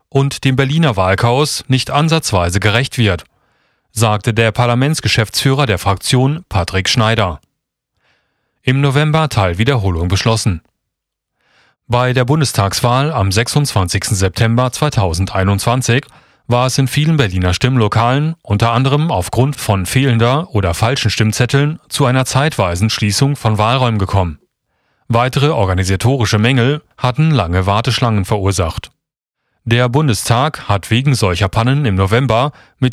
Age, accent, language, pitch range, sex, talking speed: 40-59, German, German, 105-135 Hz, male, 115 wpm